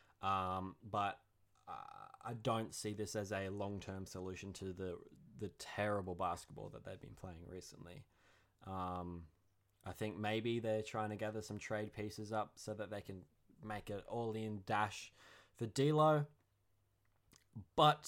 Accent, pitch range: Australian, 95-115 Hz